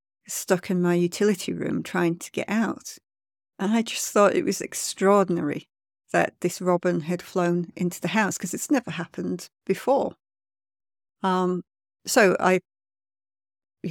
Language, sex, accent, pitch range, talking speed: English, female, British, 160-185 Hz, 140 wpm